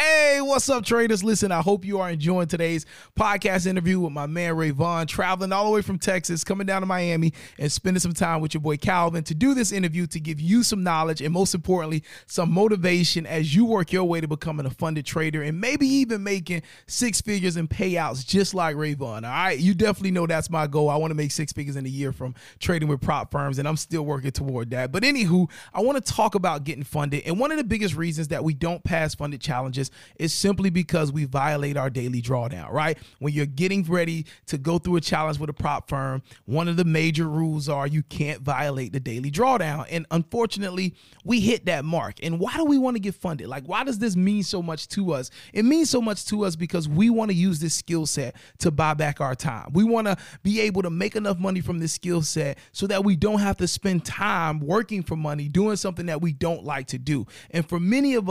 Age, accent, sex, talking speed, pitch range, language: 30-49, American, male, 240 wpm, 150-195 Hz, English